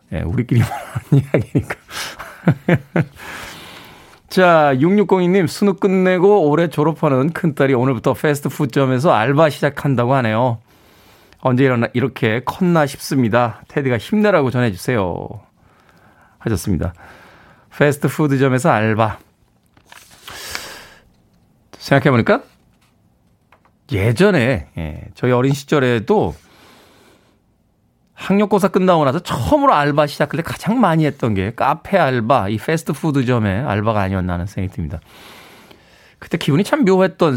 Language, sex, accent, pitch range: Korean, male, native, 115-160 Hz